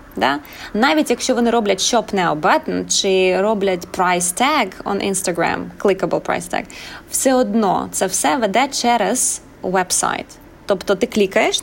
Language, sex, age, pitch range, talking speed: Ukrainian, female, 20-39, 180-220 Hz, 140 wpm